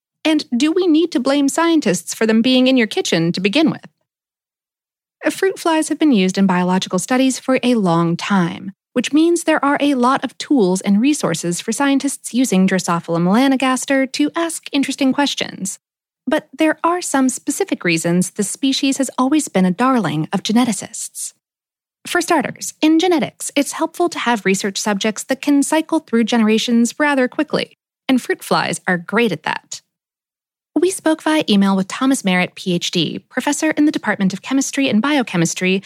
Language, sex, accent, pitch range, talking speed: English, female, American, 195-295 Hz, 170 wpm